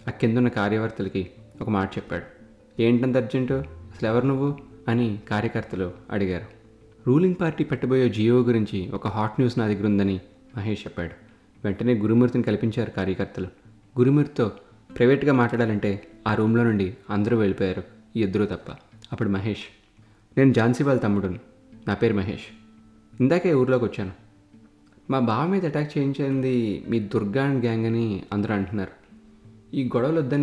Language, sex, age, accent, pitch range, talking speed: Telugu, male, 20-39, native, 105-125 Hz, 135 wpm